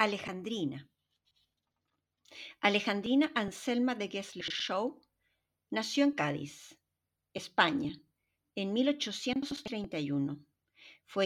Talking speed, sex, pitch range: 70 wpm, female, 170-270 Hz